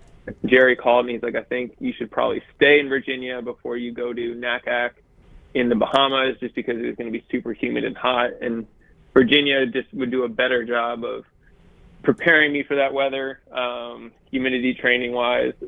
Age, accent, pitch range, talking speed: 20-39, American, 120-135 Hz, 190 wpm